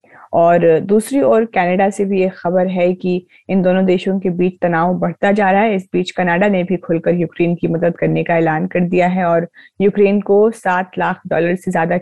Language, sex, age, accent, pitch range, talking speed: Hindi, female, 20-39, native, 170-185 Hz, 215 wpm